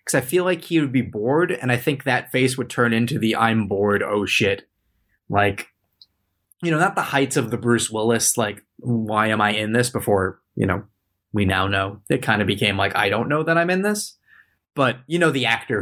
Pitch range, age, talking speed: 105-130 Hz, 20-39, 230 wpm